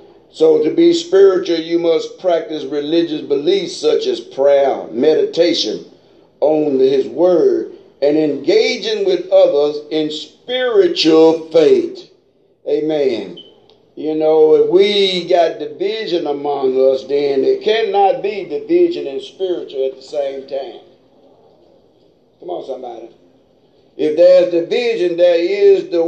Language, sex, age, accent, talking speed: English, male, 60-79, American, 120 wpm